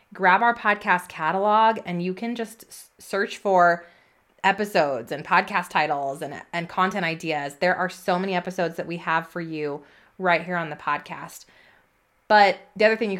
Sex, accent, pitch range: female, American, 165-205 Hz